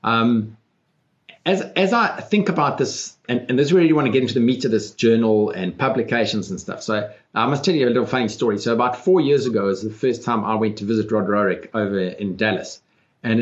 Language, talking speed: English, 235 wpm